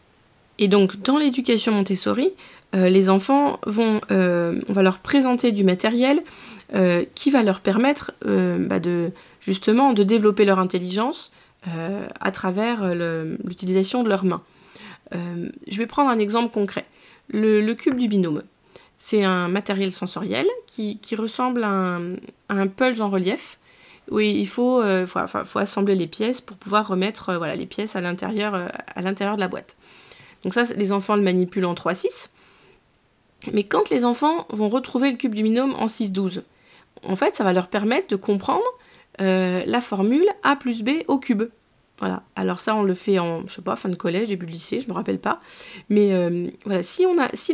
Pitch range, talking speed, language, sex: 185-240 Hz, 195 wpm, French, female